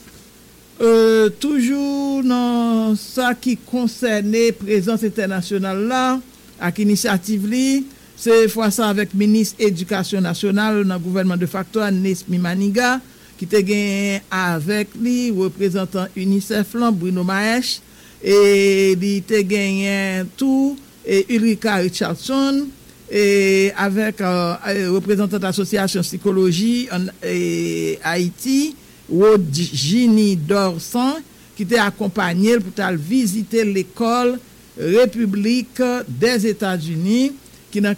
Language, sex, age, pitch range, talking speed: English, male, 60-79, 190-230 Hz, 100 wpm